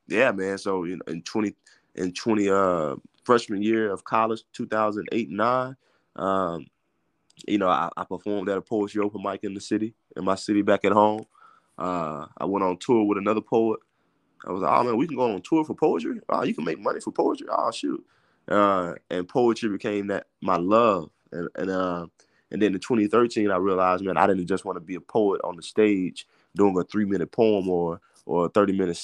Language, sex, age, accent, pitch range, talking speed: English, male, 20-39, American, 90-105 Hz, 215 wpm